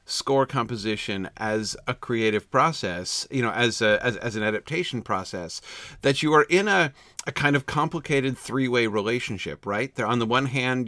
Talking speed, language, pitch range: 175 wpm, English, 110-150 Hz